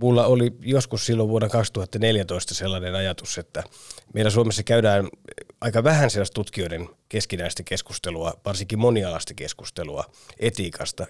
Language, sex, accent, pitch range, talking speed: Finnish, male, native, 90-115 Hz, 120 wpm